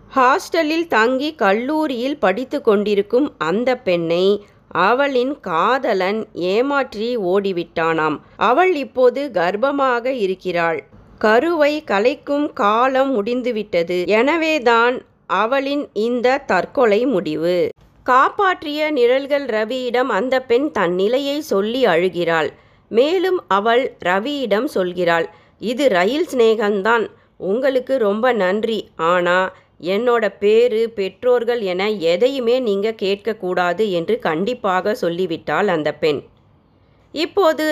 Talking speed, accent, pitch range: 90 wpm, native, 195-260 Hz